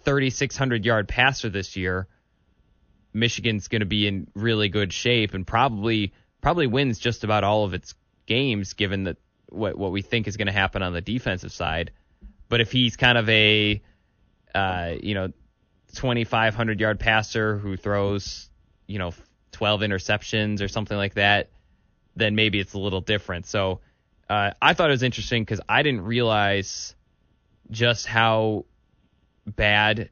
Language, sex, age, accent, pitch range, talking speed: English, male, 20-39, American, 95-115 Hz, 155 wpm